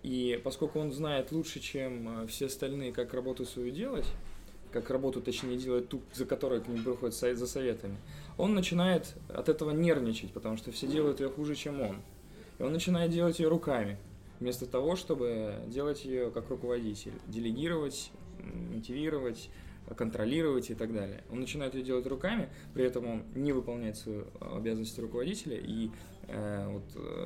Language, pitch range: Russian, 110-135 Hz